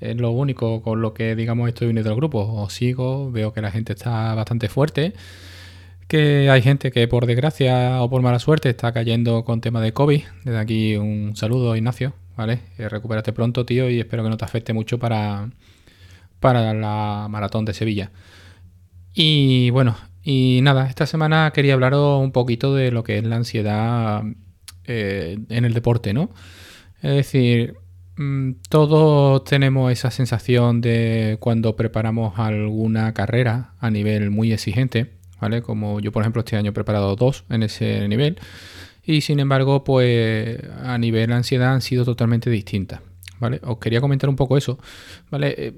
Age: 20-39